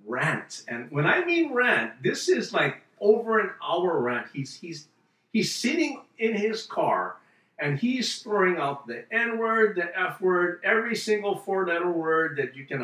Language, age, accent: English, 50-69, American